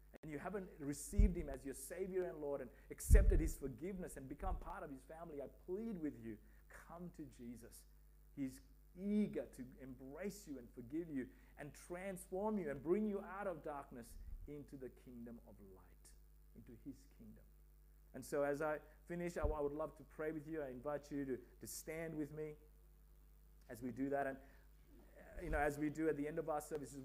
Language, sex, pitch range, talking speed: English, male, 120-155 Hz, 195 wpm